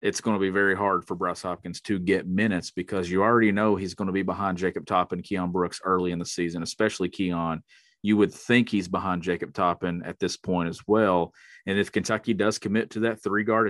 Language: English